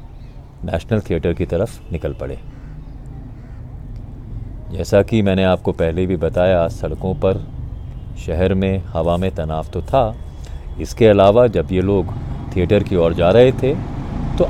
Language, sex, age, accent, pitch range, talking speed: Hindi, male, 30-49, native, 80-110 Hz, 140 wpm